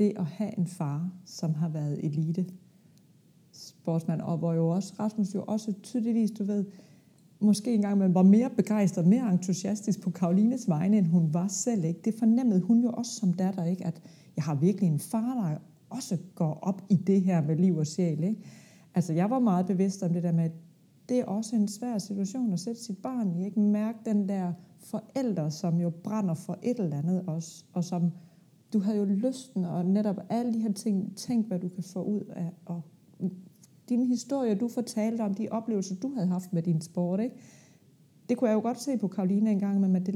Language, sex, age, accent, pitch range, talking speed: Danish, female, 30-49, native, 175-220 Hz, 210 wpm